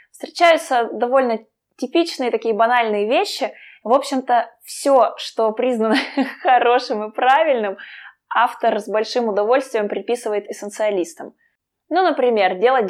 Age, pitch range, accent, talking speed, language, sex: 20-39, 210-265 Hz, native, 105 wpm, Russian, female